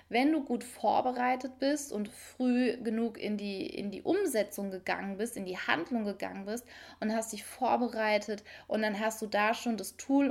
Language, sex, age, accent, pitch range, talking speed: German, female, 20-39, German, 200-250 Hz, 180 wpm